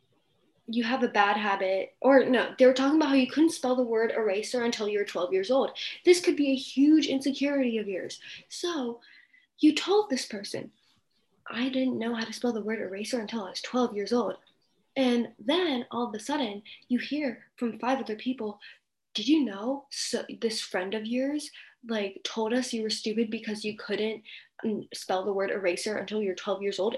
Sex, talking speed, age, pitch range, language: female, 200 wpm, 10-29, 215-275 Hz, English